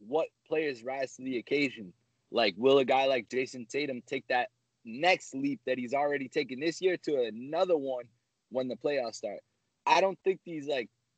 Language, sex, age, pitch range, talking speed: English, male, 20-39, 115-150 Hz, 190 wpm